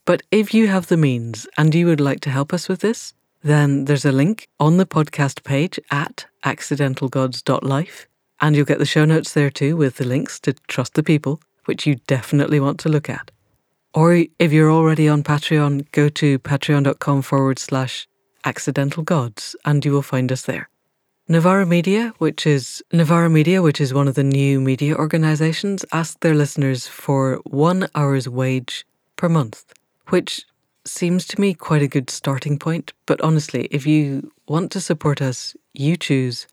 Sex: female